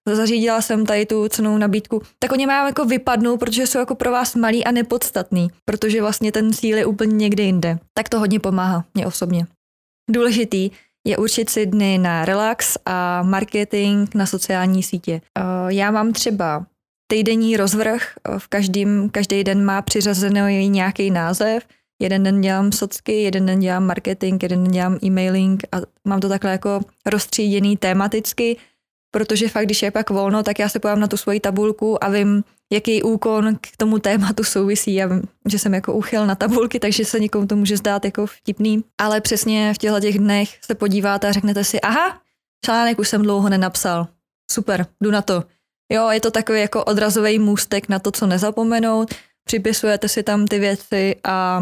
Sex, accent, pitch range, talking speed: female, native, 195-220 Hz, 175 wpm